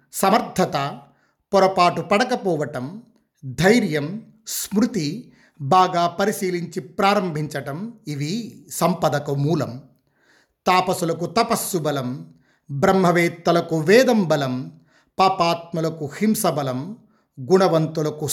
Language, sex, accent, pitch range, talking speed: Telugu, male, native, 155-190 Hz, 60 wpm